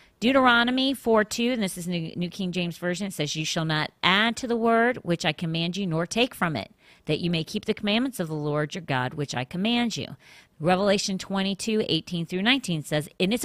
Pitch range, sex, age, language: 155-220 Hz, female, 40-59, English